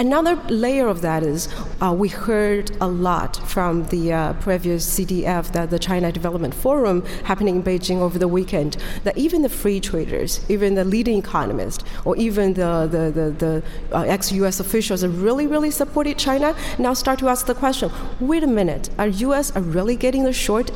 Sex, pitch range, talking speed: female, 175-215 Hz, 180 wpm